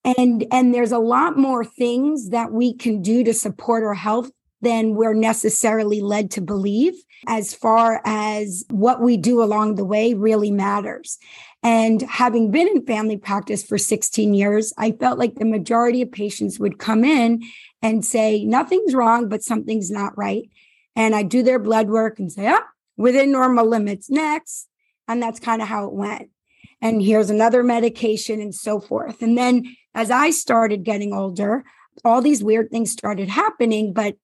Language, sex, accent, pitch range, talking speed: English, female, American, 210-240 Hz, 175 wpm